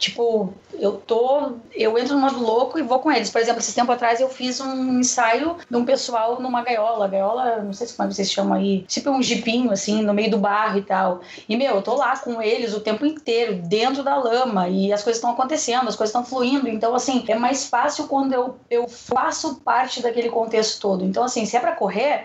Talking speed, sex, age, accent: 225 wpm, female, 20-39, Brazilian